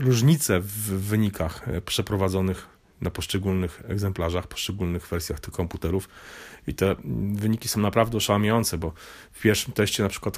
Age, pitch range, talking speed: 30-49, 95-105 Hz, 135 wpm